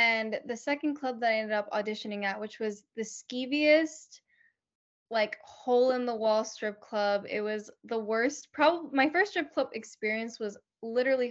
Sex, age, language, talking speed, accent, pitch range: female, 10-29, English, 155 wpm, American, 215-260 Hz